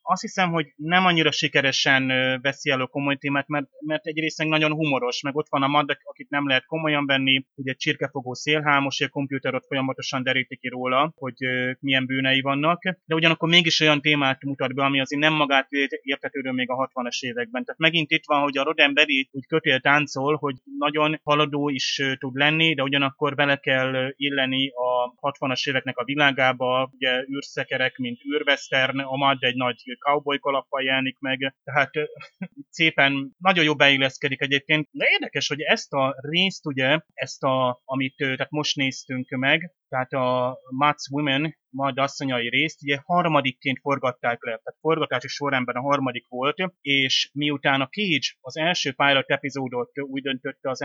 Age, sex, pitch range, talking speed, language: 30-49, male, 130-150 Hz, 165 wpm, Hungarian